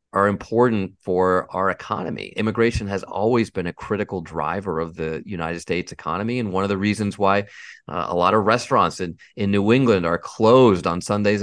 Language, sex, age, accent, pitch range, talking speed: English, male, 30-49, American, 85-110 Hz, 190 wpm